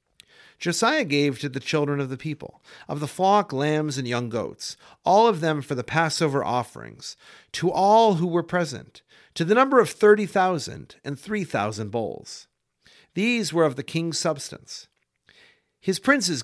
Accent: American